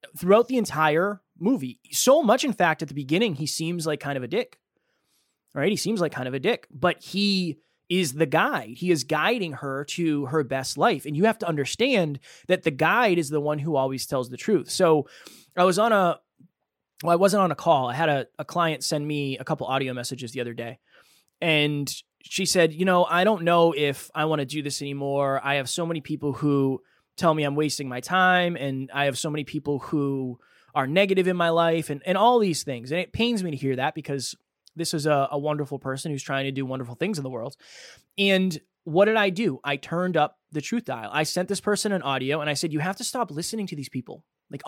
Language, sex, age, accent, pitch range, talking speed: English, male, 20-39, American, 145-185 Hz, 235 wpm